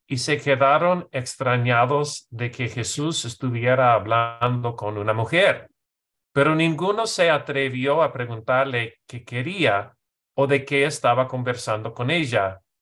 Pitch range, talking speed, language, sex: 120-145 Hz, 125 wpm, English, male